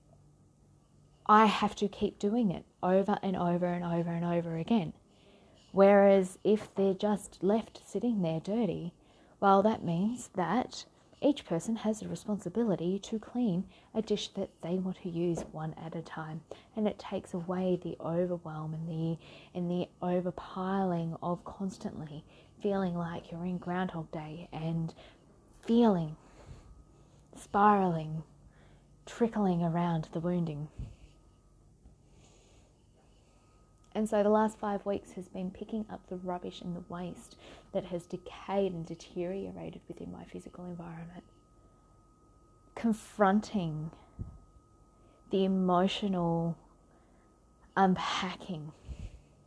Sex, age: female, 20-39